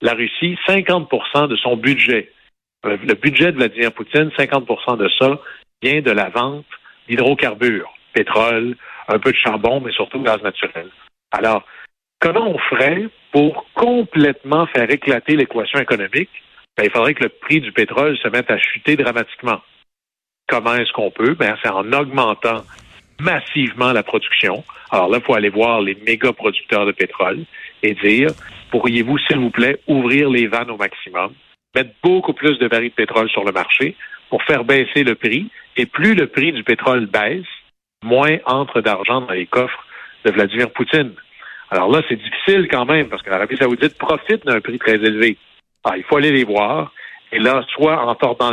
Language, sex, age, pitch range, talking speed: French, male, 60-79, 115-145 Hz, 180 wpm